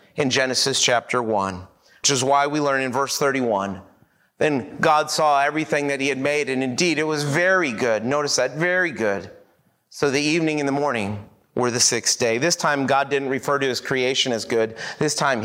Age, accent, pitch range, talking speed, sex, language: 30-49, American, 120-175 Hz, 200 wpm, male, English